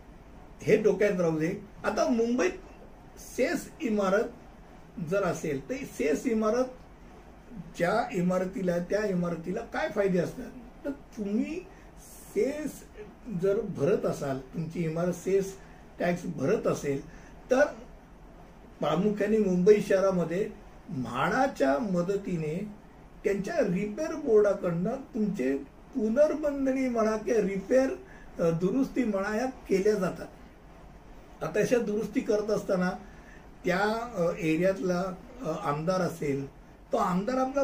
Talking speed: 60 wpm